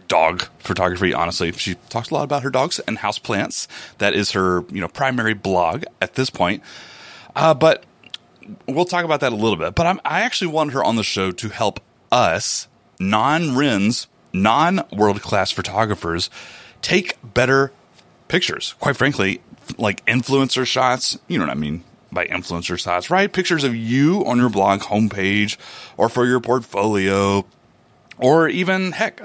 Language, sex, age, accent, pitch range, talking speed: English, male, 30-49, American, 100-160 Hz, 165 wpm